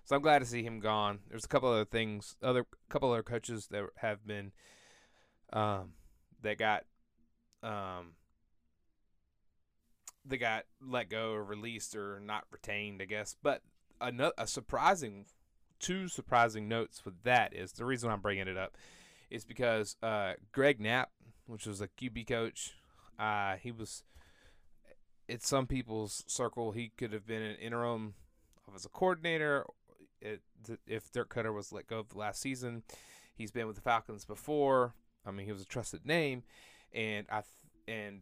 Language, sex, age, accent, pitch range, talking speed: English, male, 20-39, American, 100-125 Hz, 160 wpm